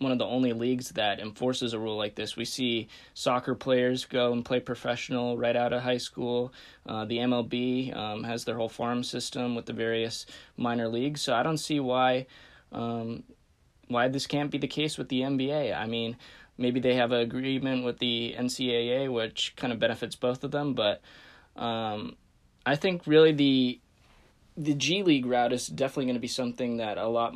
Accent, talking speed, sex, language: American, 195 wpm, male, English